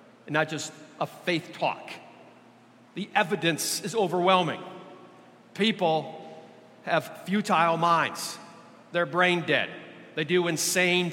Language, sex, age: English, male, 50-69